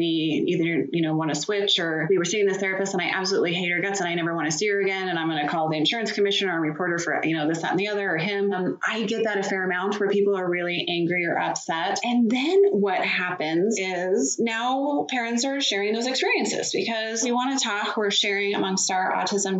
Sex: female